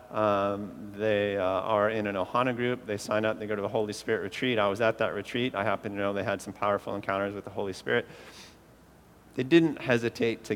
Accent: American